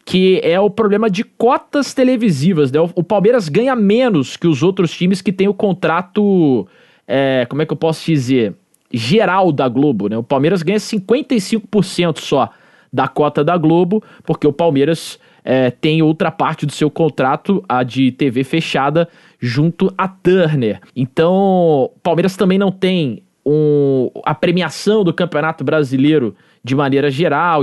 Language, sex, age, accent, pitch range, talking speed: Portuguese, male, 20-39, Brazilian, 150-205 Hz, 155 wpm